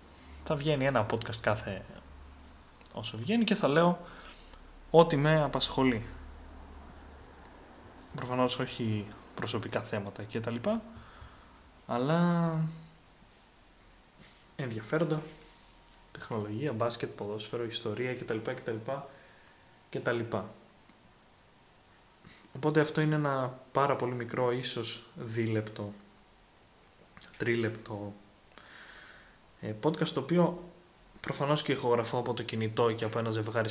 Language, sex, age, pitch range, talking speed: Greek, male, 20-39, 110-155 Hz, 105 wpm